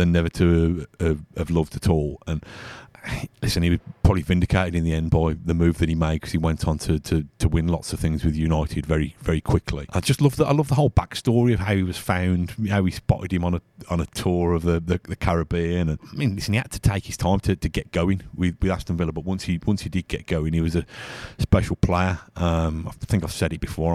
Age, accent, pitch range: 30-49, British, 85-95 Hz